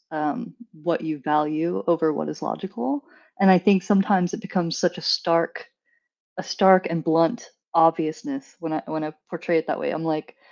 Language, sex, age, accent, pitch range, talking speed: English, female, 20-39, American, 160-185 Hz, 185 wpm